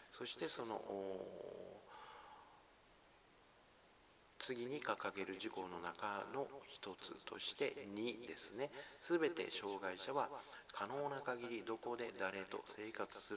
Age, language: 60-79, Japanese